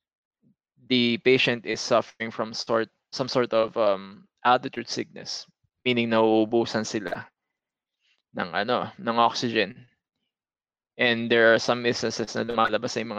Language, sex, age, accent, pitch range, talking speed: English, male, 20-39, Filipino, 110-125 Hz, 105 wpm